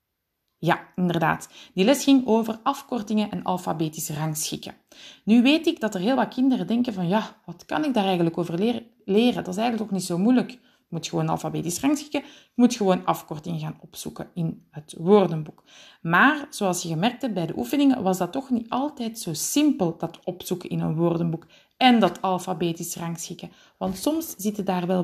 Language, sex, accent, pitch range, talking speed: Dutch, female, Dutch, 170-245 Hz, 185 wpm